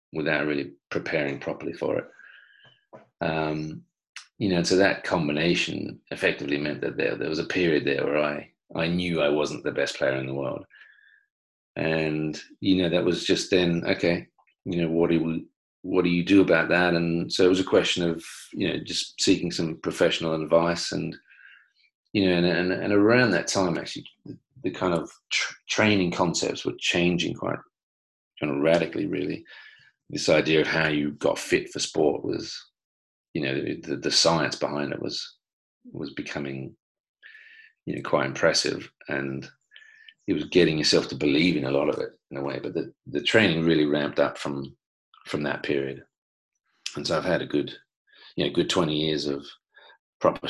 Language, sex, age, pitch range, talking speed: English, male, 40-59, 75-95 Hz, 185 wpm